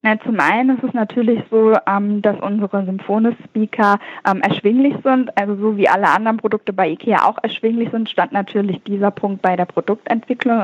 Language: German